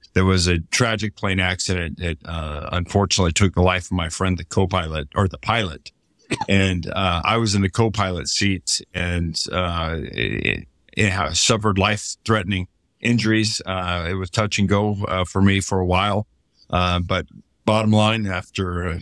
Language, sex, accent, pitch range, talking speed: English, male, American, 90-110 Hz, 165 wpm